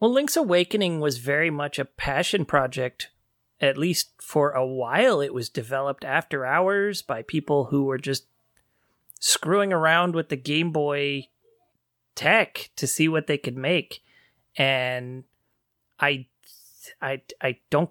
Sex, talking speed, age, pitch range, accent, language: male, 140 wpm, 30-49, 135-160 Hz, American, English